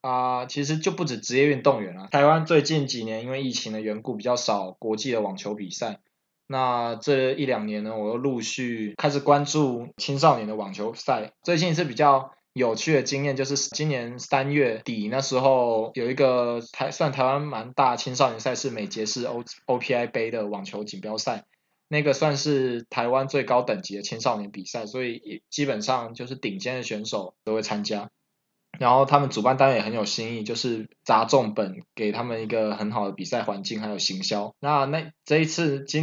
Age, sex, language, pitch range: 20-39, male, Chinese, 110-140 Hz